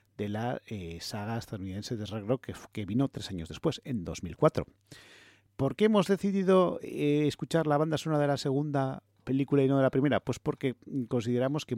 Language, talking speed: English, 195 wpm